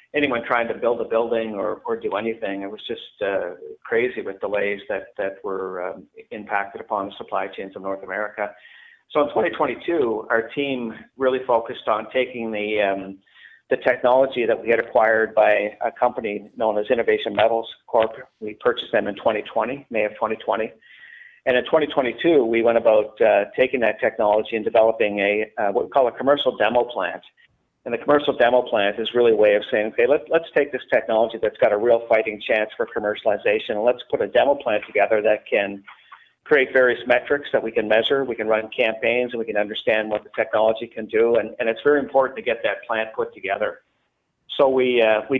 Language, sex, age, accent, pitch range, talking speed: English, male, 50-69, American, 110-145 Hz, 200 wpm